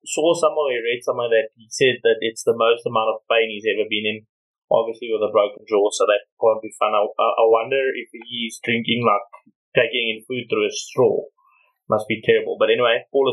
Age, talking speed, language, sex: 20-39, 215 wpm, English, male